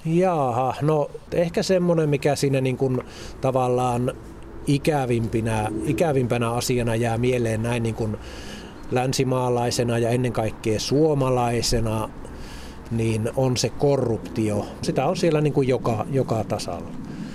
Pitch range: 115-135 Hz